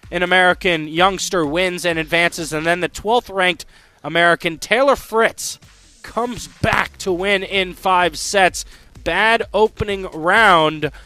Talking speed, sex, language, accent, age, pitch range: 125 wpm, male, English, American, 20-39, 155-190 Hz